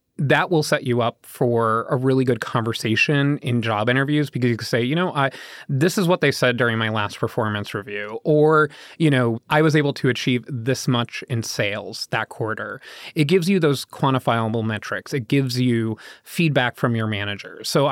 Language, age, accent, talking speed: English, 20-39, American, 195 wpm